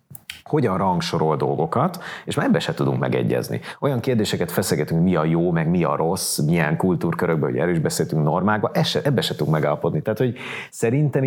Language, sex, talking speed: Hungarian, male, 175 wpm